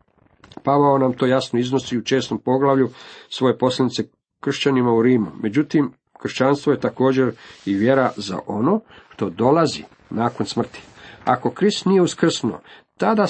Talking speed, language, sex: 135 wpm, Croatian, male